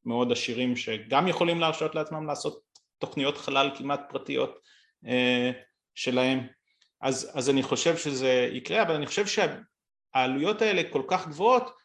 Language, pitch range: Hebrew, 130-170 Hz